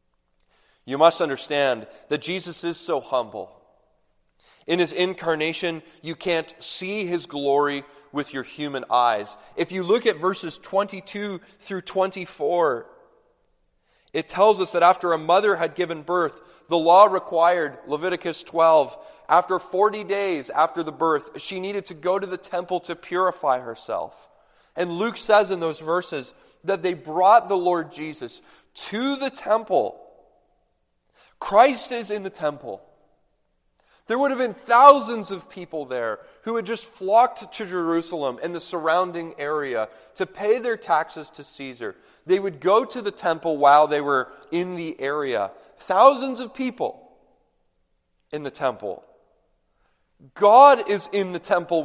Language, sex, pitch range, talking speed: English, male, 150-205 Hz, 145 wpm